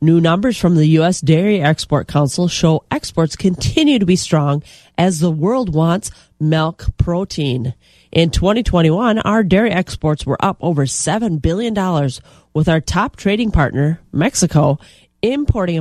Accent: American